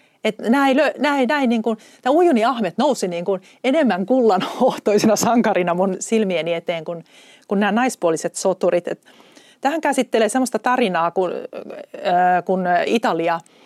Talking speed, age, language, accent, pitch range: 105 wpm, 30-49, Finnish, native, 180-230 Hz